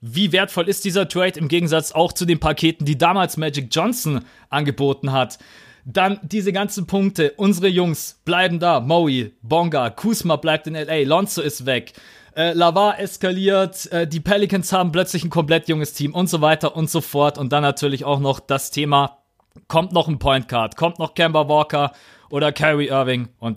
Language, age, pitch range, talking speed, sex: German, 30-49, 135-175 Hz, 185 wpm, male